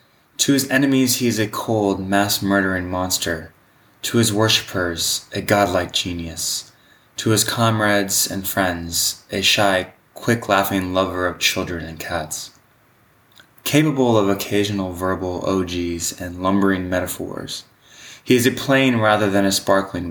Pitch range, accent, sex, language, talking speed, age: 90-115 Hz, American, male, English, 135 wpm, 20-39